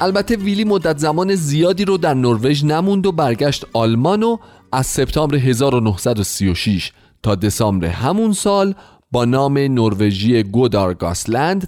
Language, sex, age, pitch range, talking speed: Persian, male, 30-49, 105-160 Hz, 120 wpm